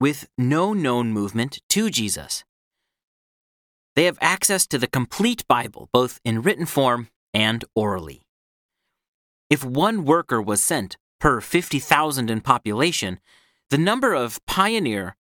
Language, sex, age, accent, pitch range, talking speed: English, male, 40-59, American, 110-165 Hz, 125 wpm